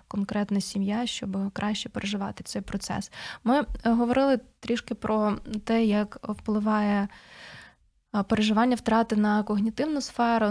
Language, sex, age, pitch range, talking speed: Ukrainian, female, 20-39, 200-230 Hz, 110 wpm